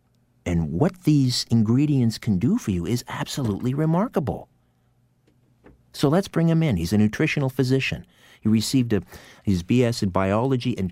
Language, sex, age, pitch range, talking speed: English, male, 50-69, 90-125 Hz, 155 wpm